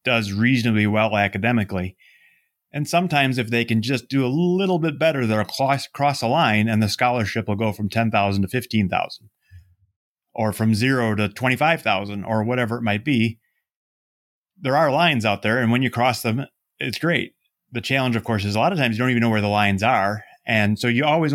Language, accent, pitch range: English, American, 105-130 Hz